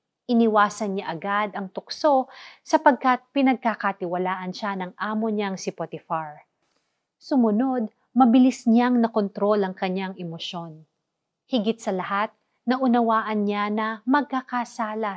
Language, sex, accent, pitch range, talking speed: Filipino, female, native, 185-230 Hz, 105 wpm